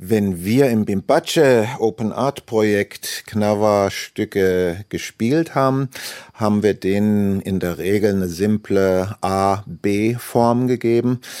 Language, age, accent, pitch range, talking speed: German, 50-69, German, 90-115 Hz, 105 wpm